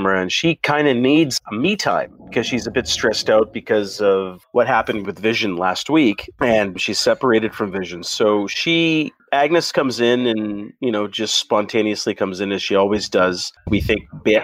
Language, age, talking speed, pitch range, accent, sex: English, 40-59, 185 wpm, 110-150 Hz, American, male